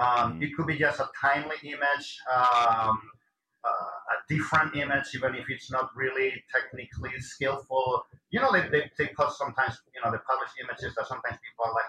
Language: English